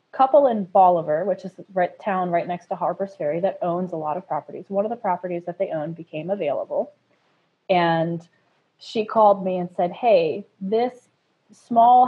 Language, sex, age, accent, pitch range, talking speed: English, female, 20-39, American, 170-220 Hz, 180 wpm